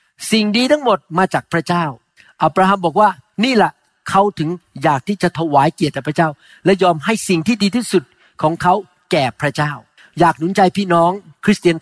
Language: Thai